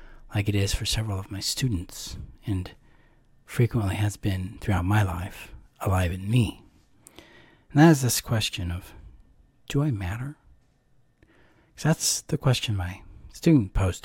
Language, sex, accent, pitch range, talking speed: English, male, American, 95-120 Hz, 140 wpm